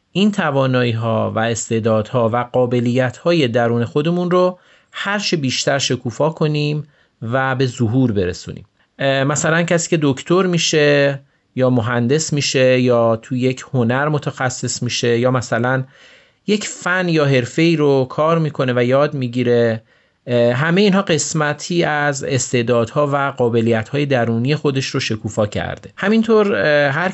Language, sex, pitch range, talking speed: Persian, male, 120-155 Hz, 125 wpm